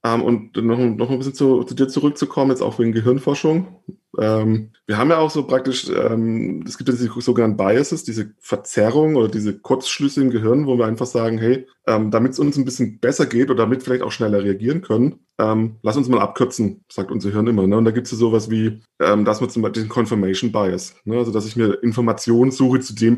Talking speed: 230 wpm